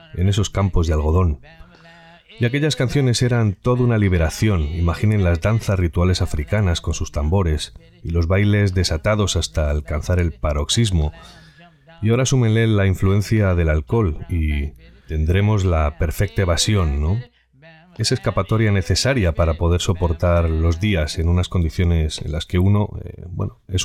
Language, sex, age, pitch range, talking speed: Spanish, male, 30-49, 85-110 Hz, 150 wpm